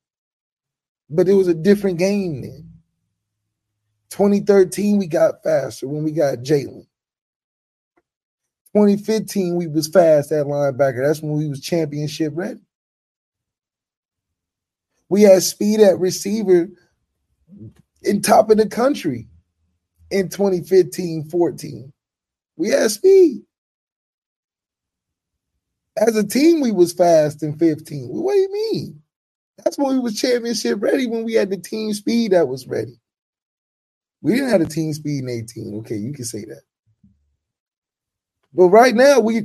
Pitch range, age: 150-220 Hz, 20-39